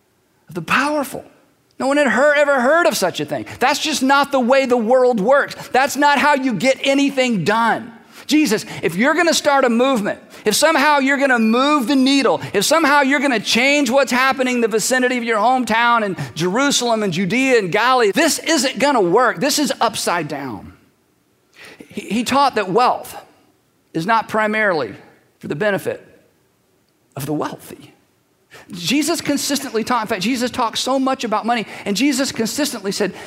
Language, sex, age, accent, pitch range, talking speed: English, male, 50-69, American, 215-275 Hz, 175 wpm